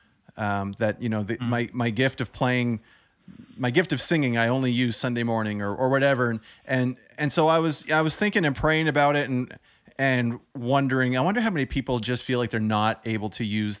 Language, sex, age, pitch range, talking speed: English, male, 30-49, 115-140 Hz, 220 wpm